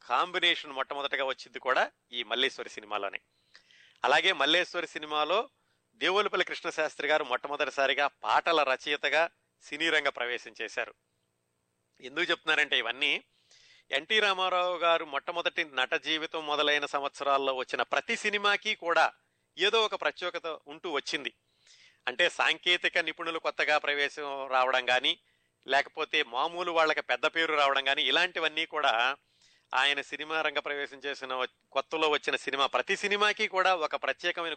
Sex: male